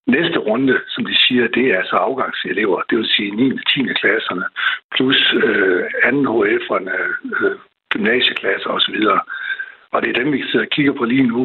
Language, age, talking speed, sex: Danish, 60-79, 180 wpm, male